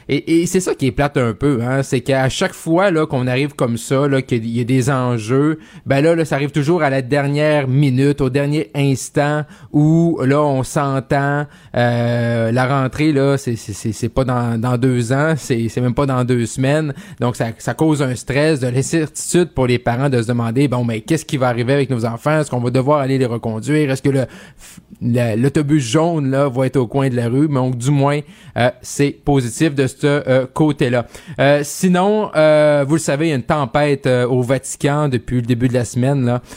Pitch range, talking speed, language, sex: 125-145 Hz, 225 wpm, French, male